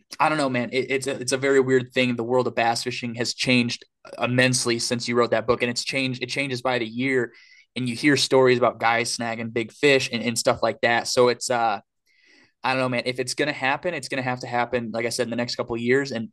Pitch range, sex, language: 120-130 Hz, male, English